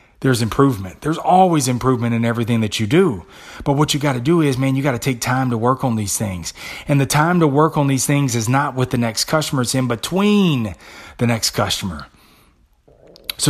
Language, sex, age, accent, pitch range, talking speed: English, male, 30-49, American, 125-165 Hz, 210 wpm